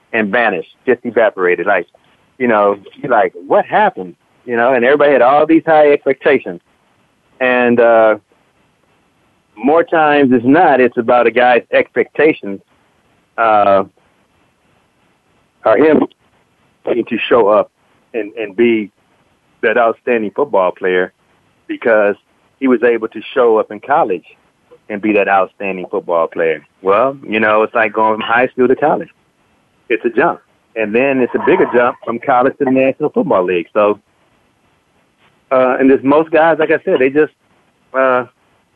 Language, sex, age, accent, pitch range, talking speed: English, male, 30-49, American, 110-145 Hz, 150 wpm